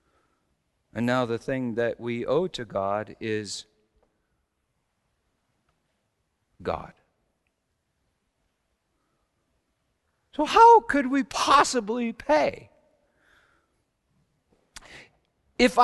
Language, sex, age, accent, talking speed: English, male, 50-69, American, 70 wpm